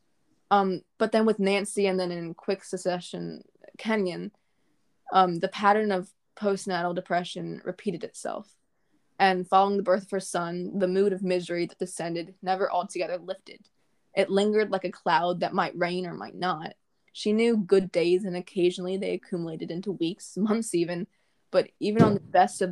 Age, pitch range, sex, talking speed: 20-39, 180-205 Hz, female, 170 wpm